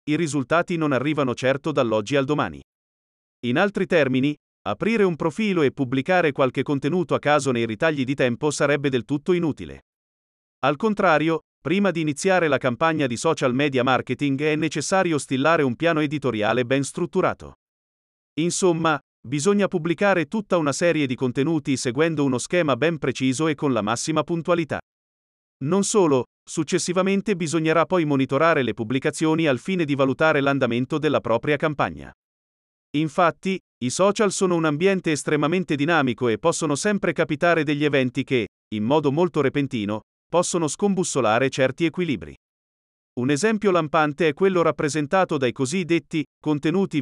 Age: 40-59